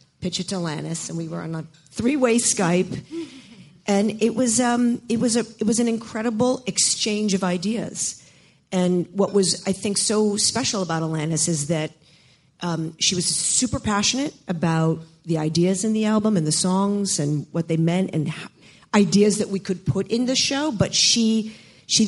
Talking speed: 180 wpm